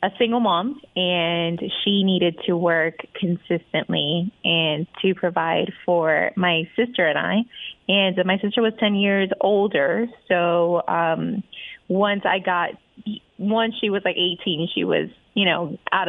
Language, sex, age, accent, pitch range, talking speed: English, female, 20-39, American, 175-215 Hz, 145 wpm